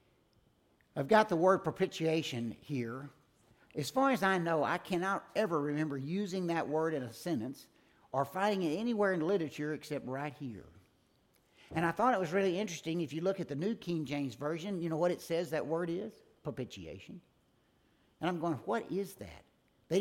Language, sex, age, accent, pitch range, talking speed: English, male, 60-79, American, 135-185 Hz, 185 wpm